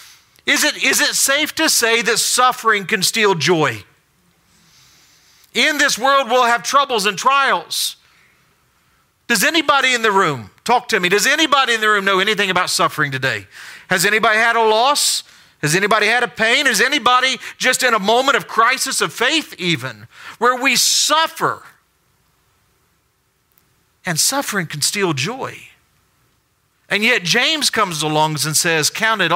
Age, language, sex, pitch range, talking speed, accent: 50-69, English, male, 140-230 Hz, 155 wpm, American